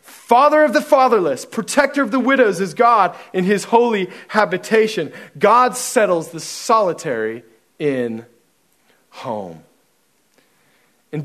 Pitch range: 200-255 Hz